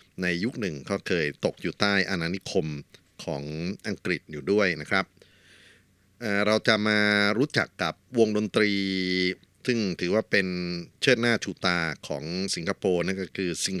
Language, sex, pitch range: Thai, male, 90-105 Hz